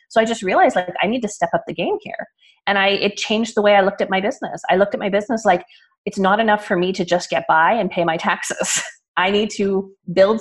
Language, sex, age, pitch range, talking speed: English, female, 30-49, 180-220 Hz, 270 wpm